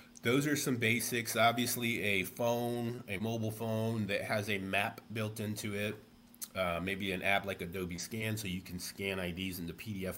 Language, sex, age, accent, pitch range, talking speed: English, male, 30-49, American, 95-115 Hz, 190 wpm